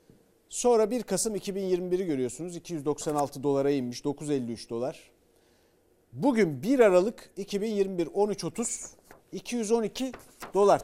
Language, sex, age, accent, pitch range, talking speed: Turkish, male, 50-69, native, 155-225 Hz, 95 wpm